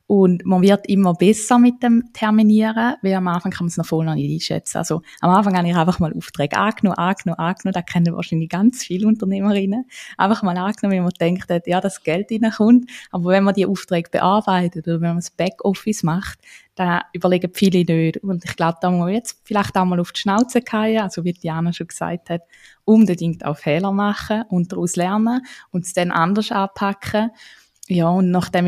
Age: 20-39